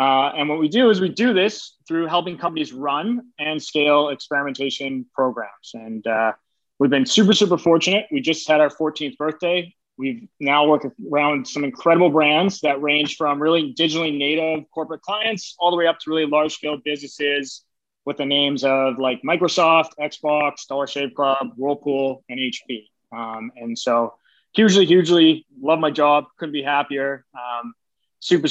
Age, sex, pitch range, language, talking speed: 20-39, male, 135-165 Hz, English, 170 wpm